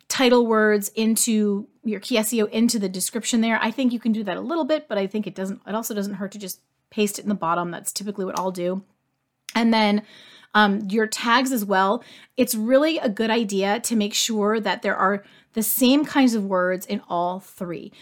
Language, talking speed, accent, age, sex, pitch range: English, 220 wpm, American, 30-49, female, 195-235 Hz